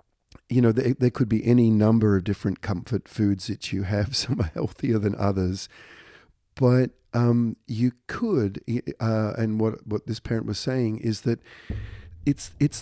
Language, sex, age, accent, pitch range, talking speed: English, male, 50-69, Australian, 100-125 Hz, 170 wpm